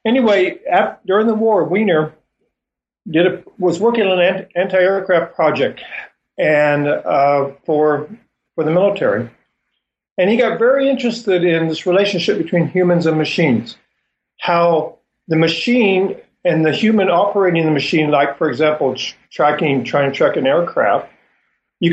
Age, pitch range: 50-69, 135-185 Hz